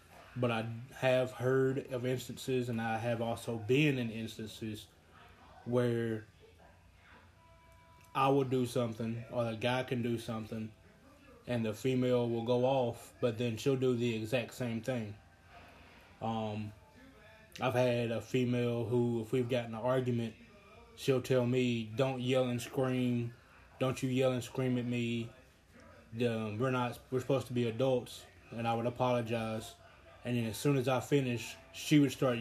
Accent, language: American, English